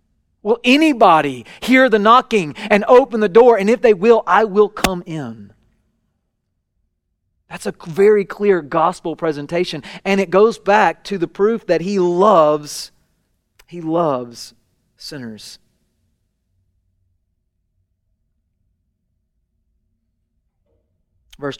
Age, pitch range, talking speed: 40-59, 115-165 Hz, 105 wpm